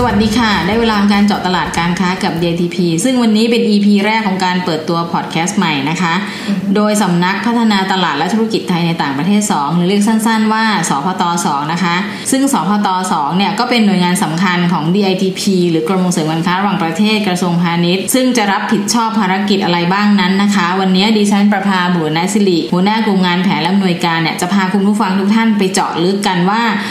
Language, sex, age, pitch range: Thai, female, 20-39, 180-215 Hz